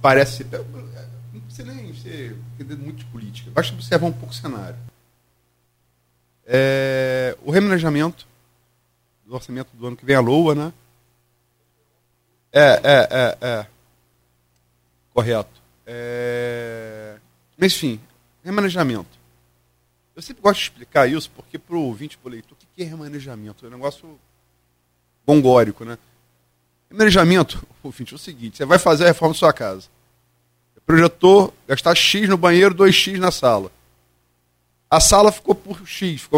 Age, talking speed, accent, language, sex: 40-59, 135 wpm, Brazilian, Portuguese, male